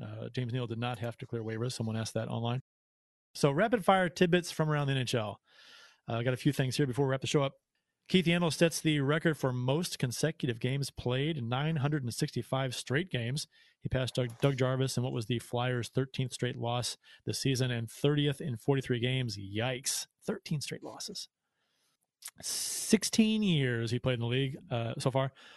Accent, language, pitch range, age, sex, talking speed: American, English, 125-155 Hz, 30-49, male, 190 wpm